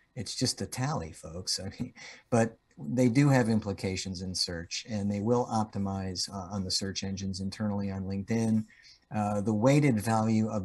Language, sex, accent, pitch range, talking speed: English, male, American, 95-110 Hz, 165 wpm